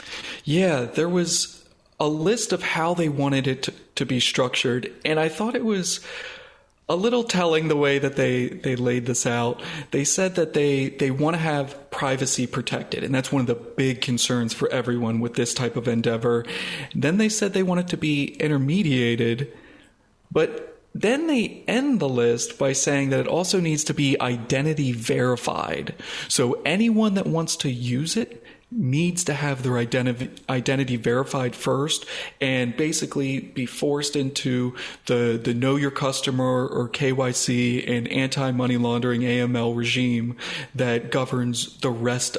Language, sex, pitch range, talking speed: English, male, 125-155 Hz, 160 wpm